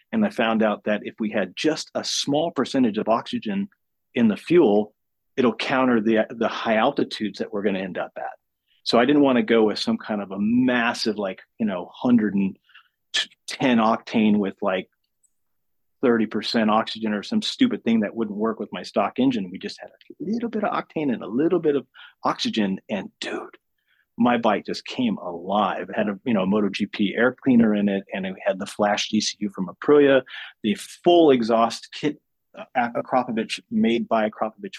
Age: 40-59